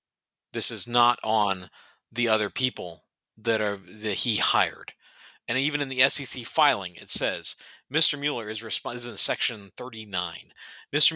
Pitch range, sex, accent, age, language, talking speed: 120-155 Hz, male, American, 40-59, English, 160 wpm